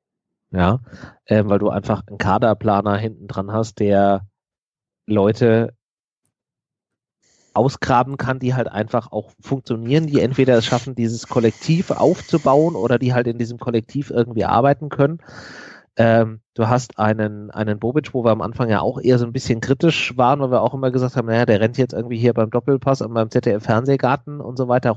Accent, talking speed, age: German, 175 wpm, 30-49